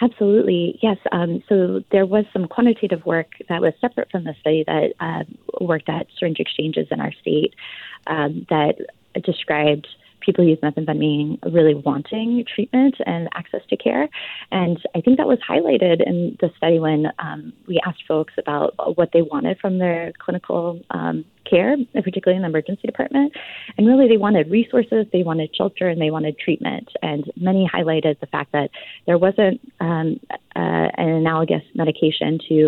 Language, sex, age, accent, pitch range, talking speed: English, female, 20-39, American, 150-195 Hz, 165 wpm